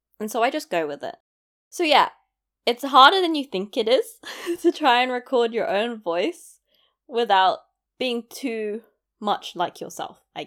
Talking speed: 170 wpm